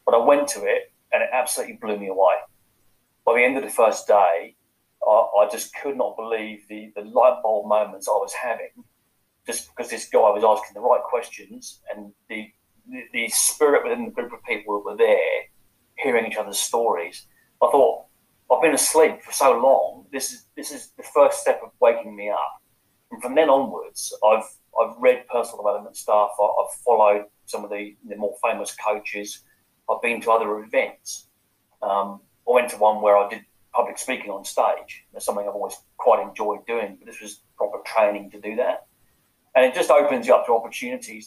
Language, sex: English, male